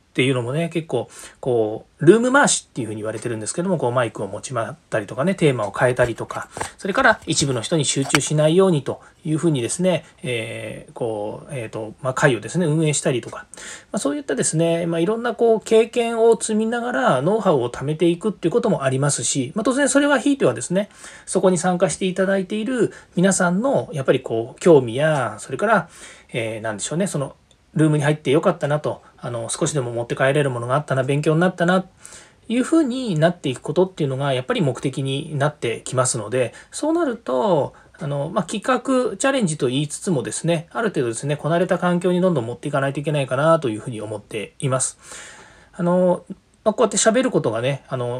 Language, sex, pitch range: Japanese, male, 130-190 Hz